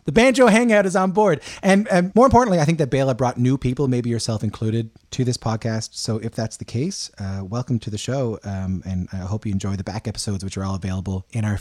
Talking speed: 250 wpm